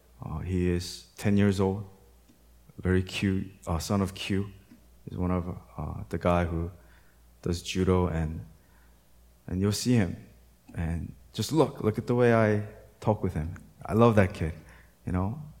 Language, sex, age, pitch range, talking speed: English, male, 20-39, 85-110 Hz, 165 wpm